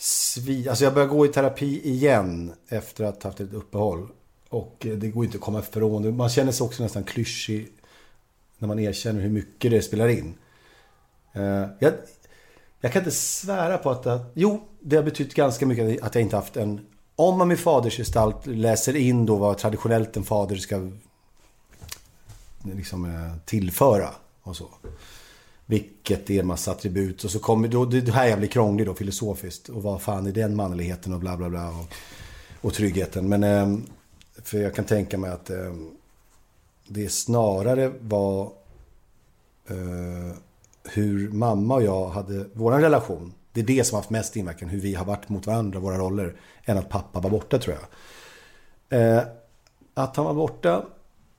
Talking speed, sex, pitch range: 165 wpm, male, 100-120 Hz